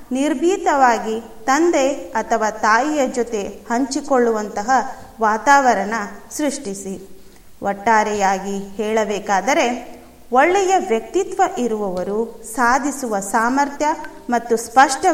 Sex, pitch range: female, 215-290 Hz